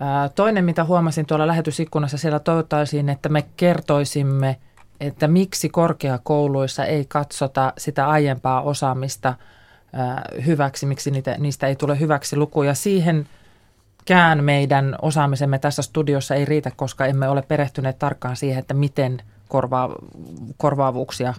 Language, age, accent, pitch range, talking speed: Finnish, 30-49, native, 130-155 Hz, 120 wpm